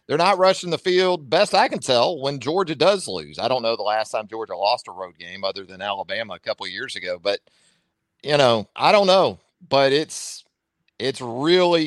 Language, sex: English, male